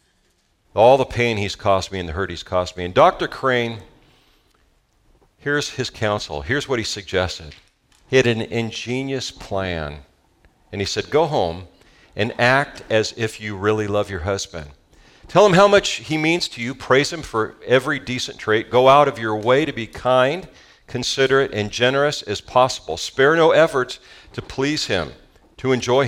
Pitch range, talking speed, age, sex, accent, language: 105-140 Hz, 175 wpm, 50-69, male, American, English